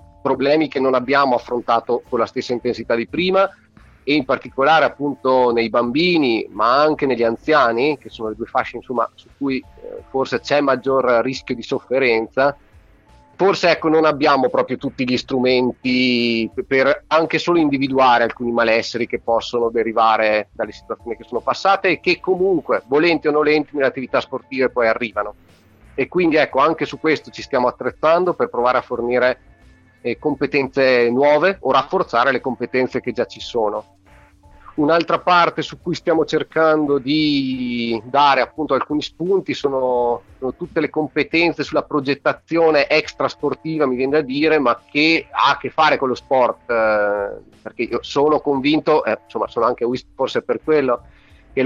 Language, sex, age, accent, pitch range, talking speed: Italian, male, 40-59, native, 120-155 Hz, 160 wpm